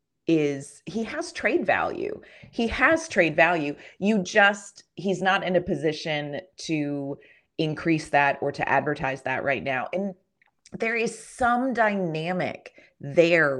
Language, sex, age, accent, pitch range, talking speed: English, female, 30-49, American, 145-185 Hz, 135 wpm